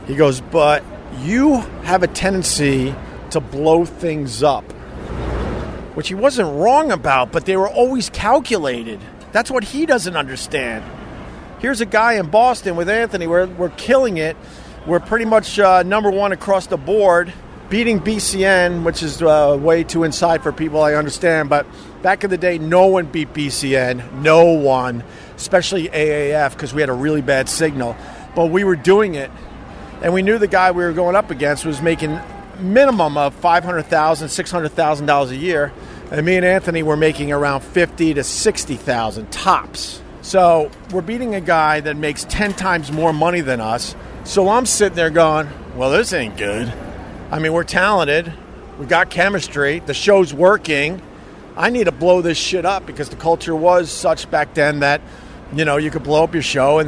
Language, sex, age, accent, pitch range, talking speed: English, male, 50-69, American, 150-190 Hz, 180 wpm